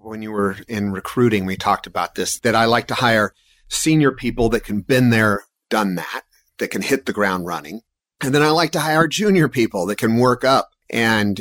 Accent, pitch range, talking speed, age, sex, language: American, 100-135 Hz, 215 wpm, 40-59, male, English